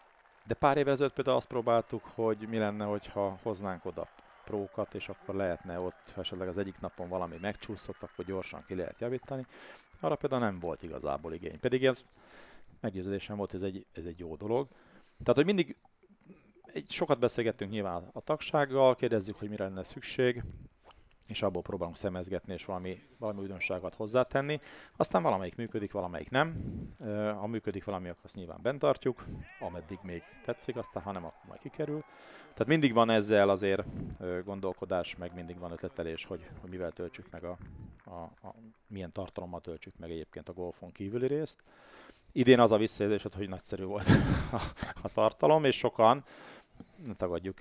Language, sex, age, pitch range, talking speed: Hungarian, male, 40-59, 95-115 Hz, 165 wpm